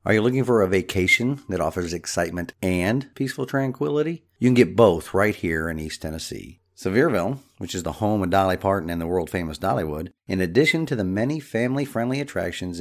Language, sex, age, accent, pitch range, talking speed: English, male, 50-69, American, 80-115 Hz, 190 wpm